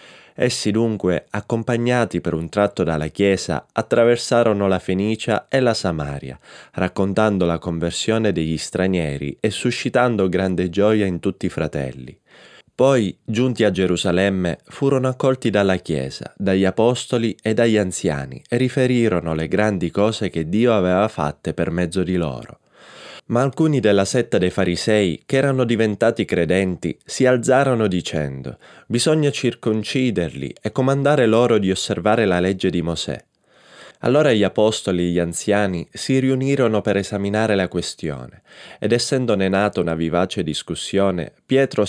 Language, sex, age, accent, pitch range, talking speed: Italian, male, 20-39, native, 90-115 Hz, 140 wpm